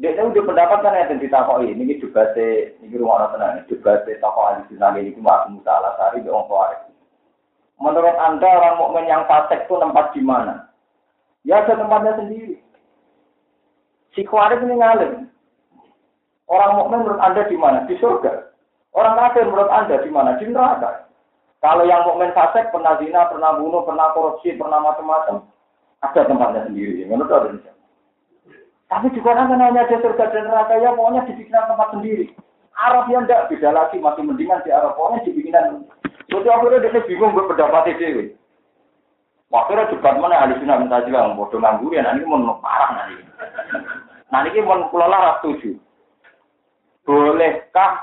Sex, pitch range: male, 170-260 Hz